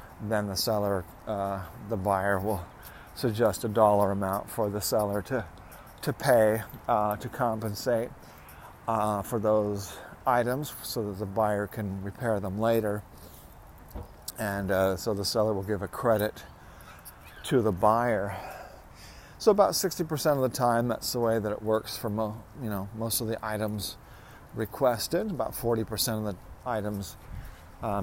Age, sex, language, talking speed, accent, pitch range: 50-69, male, English, 150 wpm, American, 100-110 Hz